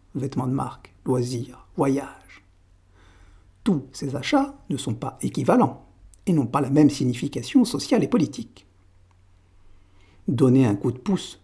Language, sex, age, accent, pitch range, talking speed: French, male, 60-79, French, 95-150 Hz, 135 wpm